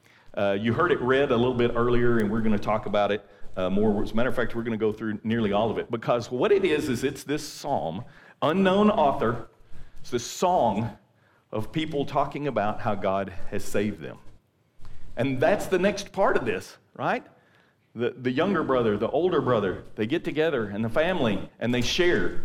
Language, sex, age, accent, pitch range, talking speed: English, male, 50-69, American, 110-160 Hz, 210 wpm